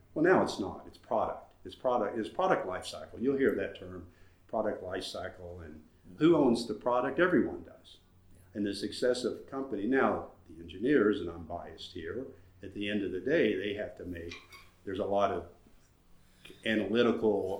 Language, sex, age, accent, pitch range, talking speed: English, male, 50-69, American, 90-145 Hz, 185 wpm